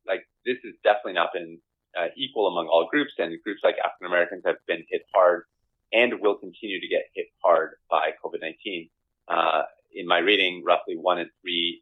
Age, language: 30-49, English